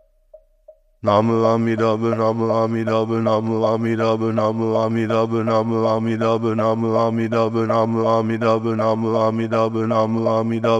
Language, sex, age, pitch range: German, male, 60-79, 110-115 Hz